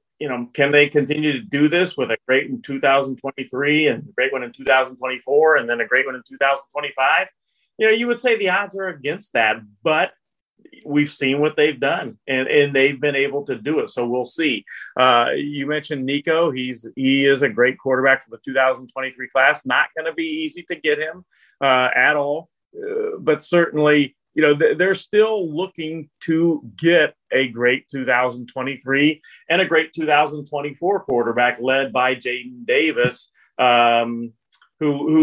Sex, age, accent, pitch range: male, 40-59, American, 125-155 Hz